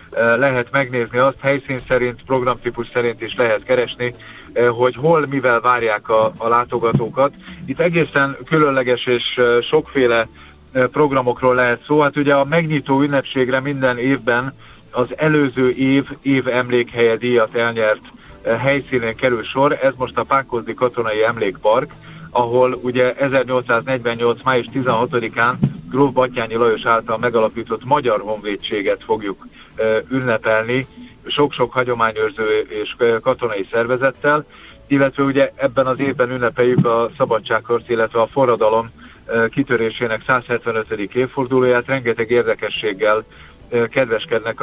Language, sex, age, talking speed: Hungarian, male, 50-69, 115 wpm